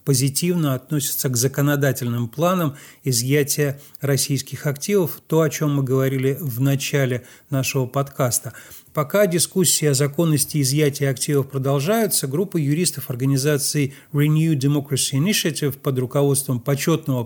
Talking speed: 115 wpm